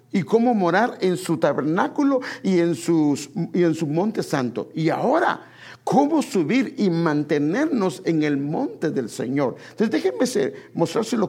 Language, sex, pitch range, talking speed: English, male, 130-195 Hz, 150 wpm